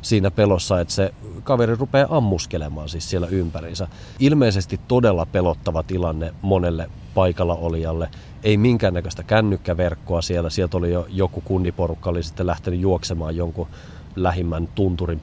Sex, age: male, 30-49